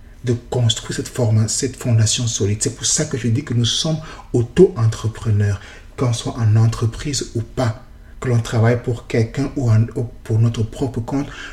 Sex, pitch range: male, 110-140 Hz